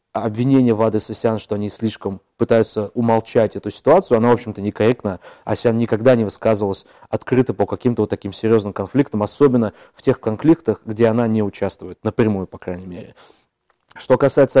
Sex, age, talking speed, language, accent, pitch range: male, 20-39, 175 wpm, Russian, native, 105-125 Hz